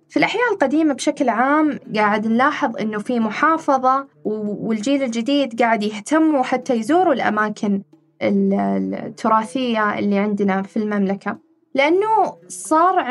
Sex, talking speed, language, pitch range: female, 110 wpm, Arabic, 205-280 Hz